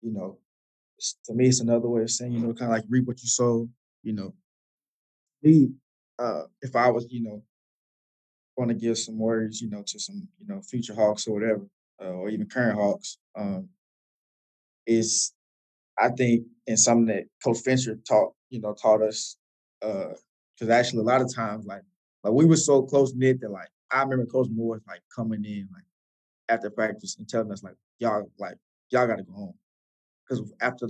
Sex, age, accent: male, 20-39, American